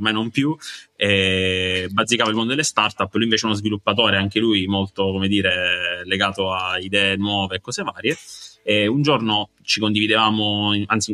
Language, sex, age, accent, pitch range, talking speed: Italian, male, 20-39, native, 95-110 Hz, 165 wpm